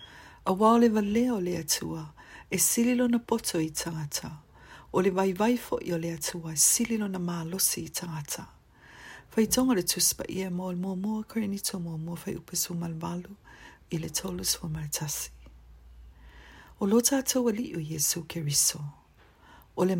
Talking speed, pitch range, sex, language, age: 130 wpm, 155-205 Hz, female, English, 40-59